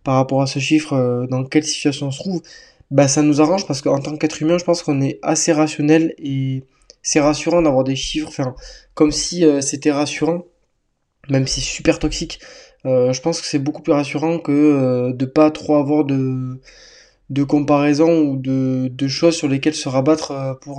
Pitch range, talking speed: 135-160 Hz, 195 wpm